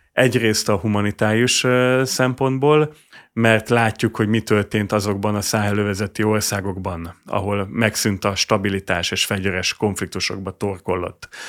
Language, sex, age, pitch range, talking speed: Hungarian, male, 30-49, 100-115 Hz, 110 wpm